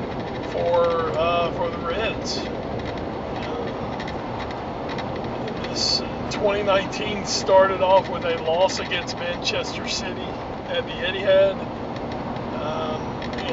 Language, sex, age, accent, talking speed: English, male, 40-59, American, 90 wpm